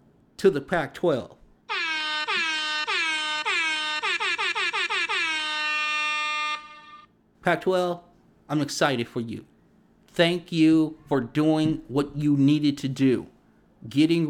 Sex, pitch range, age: male, 135-165 Hz, 50-69